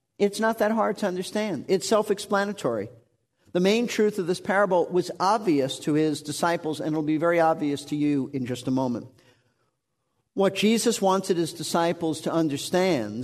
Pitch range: 140-175 Hz